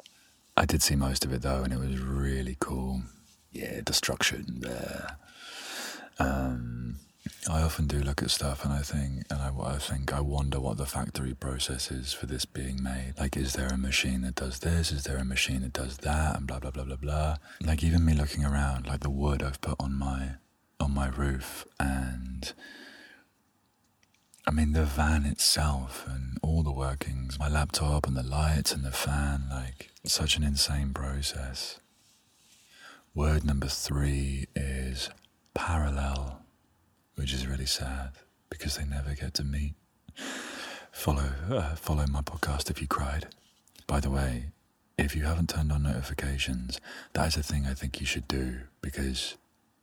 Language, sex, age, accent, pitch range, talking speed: English, male, 30-49, British, 65-75 Hz, 170 wpm